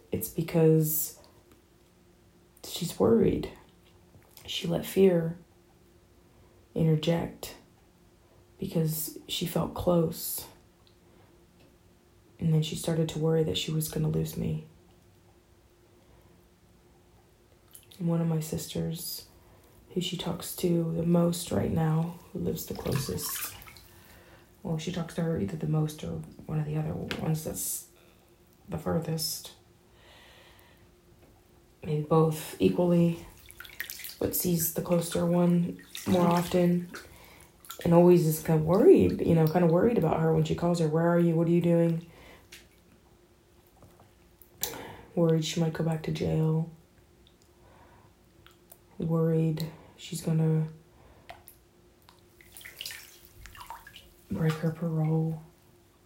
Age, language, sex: 20-39, English, female